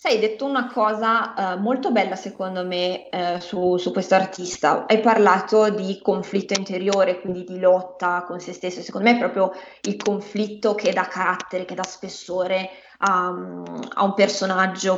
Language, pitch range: Italian, 185-215 Hz